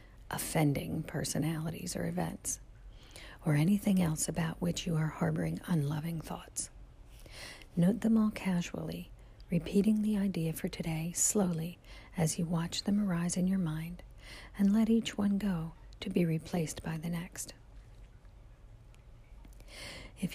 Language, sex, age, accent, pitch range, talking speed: English, female, 50-69, American, 120-185 Hz, 130 wpm